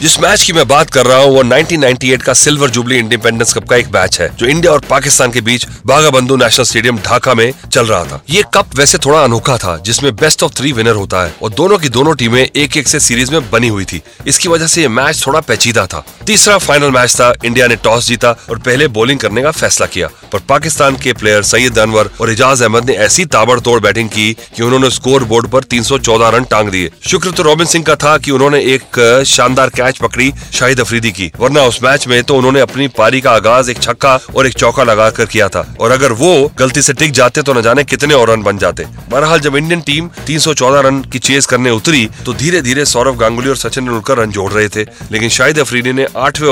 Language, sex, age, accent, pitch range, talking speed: Hindi, male, 30-49, native, 115-145 Hz, 215 wpm